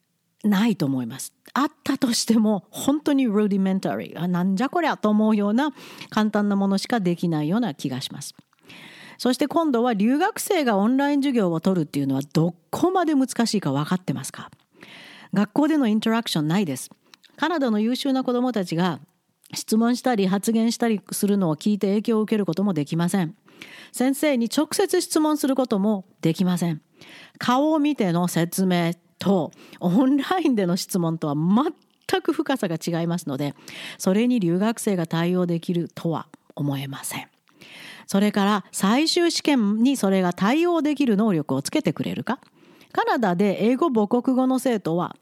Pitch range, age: 170-255 Hz, 40-59